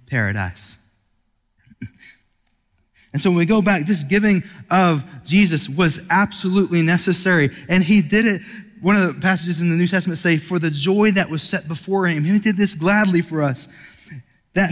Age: 20-39